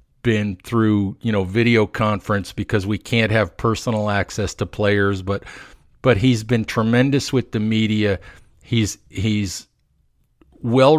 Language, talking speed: English, 135 wpm